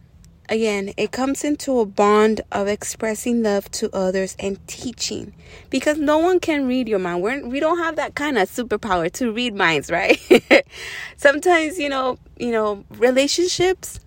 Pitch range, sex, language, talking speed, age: 205-265 Hz, female, English, 160 wpm, 20-39